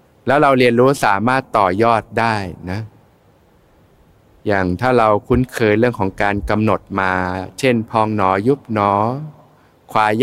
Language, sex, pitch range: Thai, male, 95-120 Hz